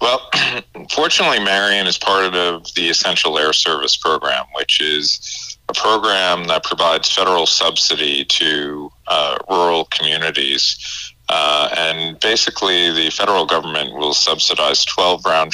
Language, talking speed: English, 125 wpm